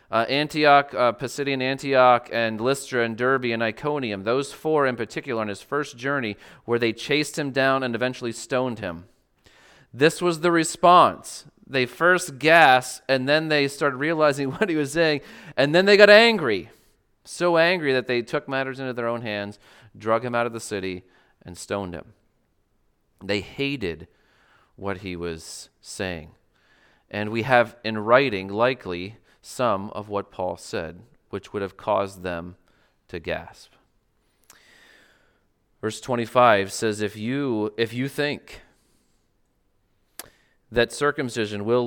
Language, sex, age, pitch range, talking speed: English, male, 30-49, 105-135 Hz, 150 wpm